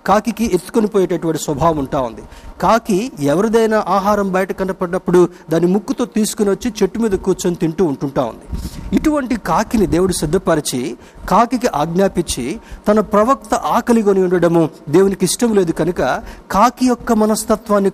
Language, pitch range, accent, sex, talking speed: Telugu, 160-210 Hz, native, male, 125 wpm